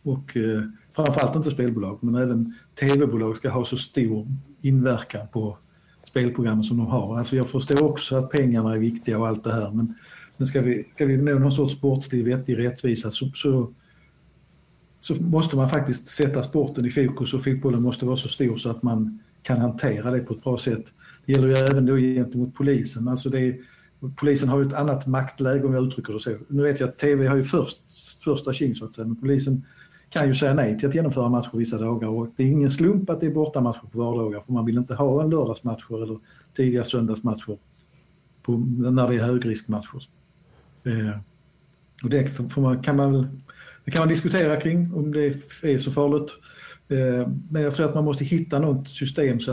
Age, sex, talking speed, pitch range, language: 50-69, male, 205 wpm, 120-140 Hz, Swedish